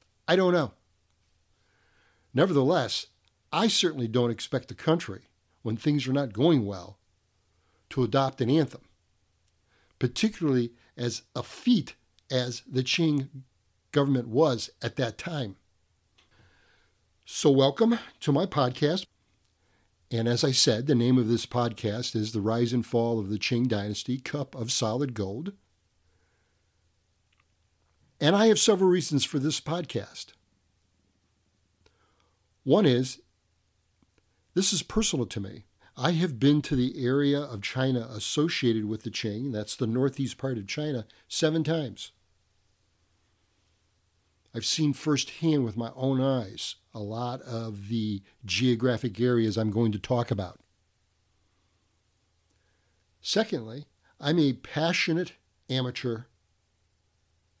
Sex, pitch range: male, 95-135 Hz